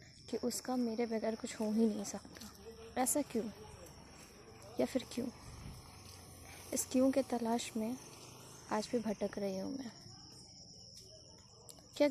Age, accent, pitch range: 20-39, native, 215-255 Hz